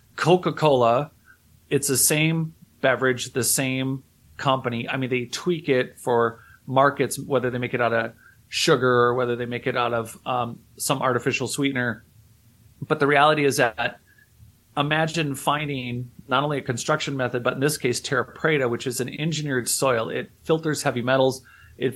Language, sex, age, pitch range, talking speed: English, male, 30-49, 120-145 Hz, 165 wpm